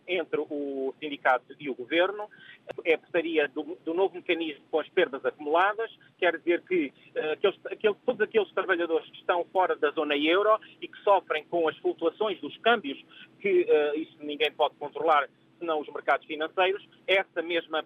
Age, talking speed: 30-49, 170 wpm